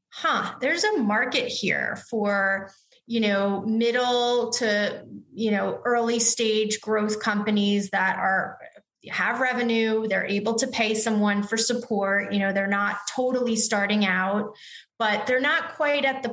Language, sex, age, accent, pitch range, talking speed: English, female, 30-49, American, 205-230 Hz, 145 wpm